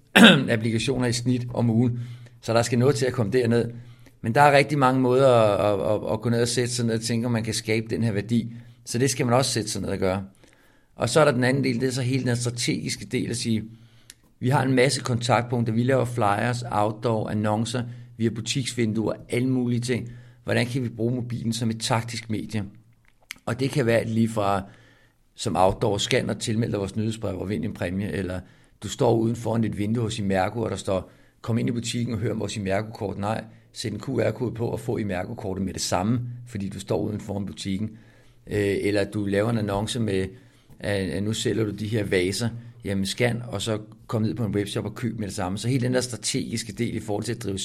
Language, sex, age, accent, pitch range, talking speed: Danish, male, 60-79, native, 105-120 Hz, 230 wpm